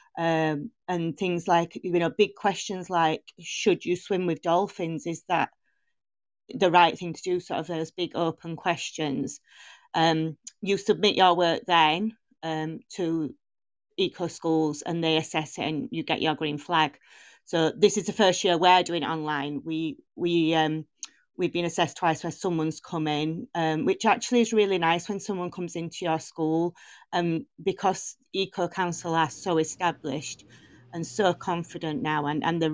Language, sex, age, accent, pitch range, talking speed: English, female, 30-49, British, 155-180 Hz, 170 wpm